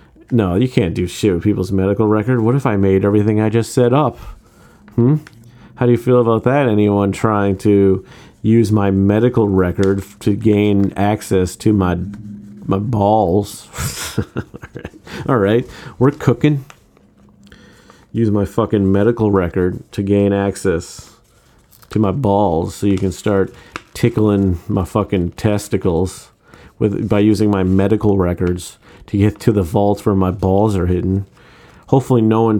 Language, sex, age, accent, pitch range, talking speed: English, male, 40-59, American, 95-115 Hz, 150 wpm